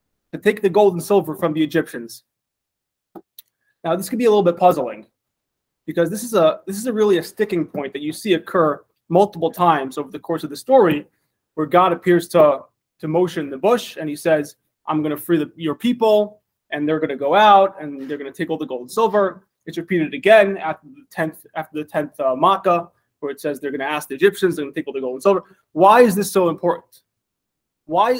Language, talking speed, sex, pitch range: English, 220 wpm, male, 155-195 Hz